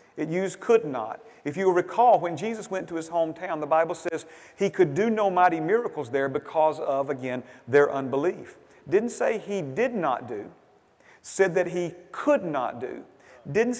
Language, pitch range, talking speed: English, 160-225 Hz, 180 wpm